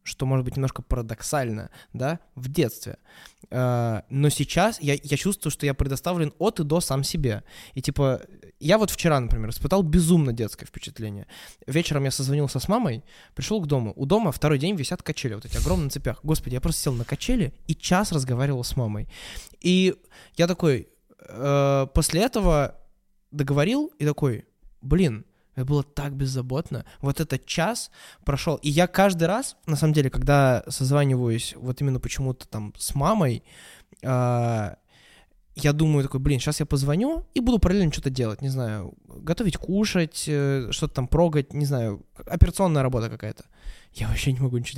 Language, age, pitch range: Russian, 20-39, 125-160 Hz